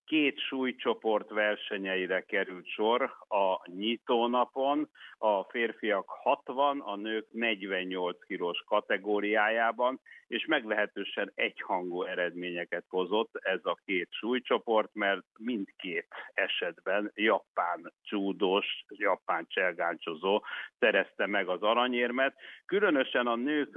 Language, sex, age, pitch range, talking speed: Hungarian, male, 60-79, 100-115 Hz, 95 wpm